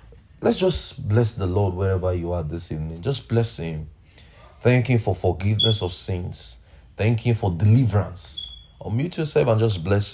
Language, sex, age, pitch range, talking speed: English, male, 30-49, 90-125 Hz, 165 wpm